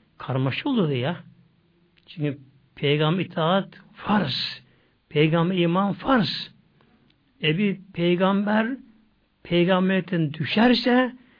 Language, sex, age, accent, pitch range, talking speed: Turkish, male, 60-79, native, 150-210 Hz, 80 wpm